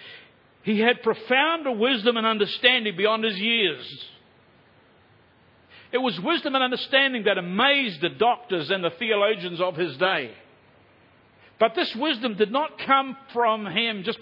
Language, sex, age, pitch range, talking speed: English, male, 60-79, 180-245 Hz, 140 wpm